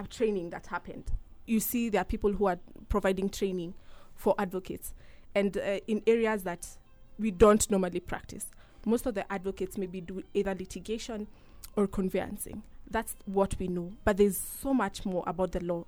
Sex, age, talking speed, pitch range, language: female, 20-39, 170 wpm, 185-220 Hz, English